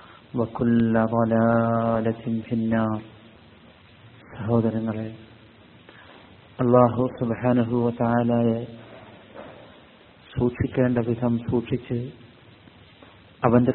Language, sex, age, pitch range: Malayalam, male, 50-69, 115-125 Hz